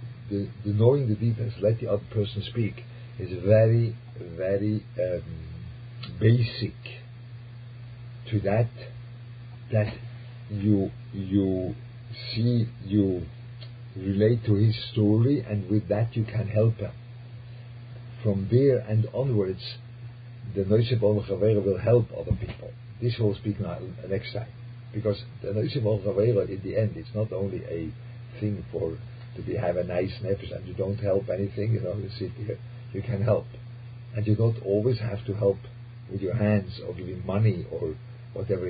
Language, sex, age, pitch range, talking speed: English, male, 50-69, 105-120 Hz, 150 wpm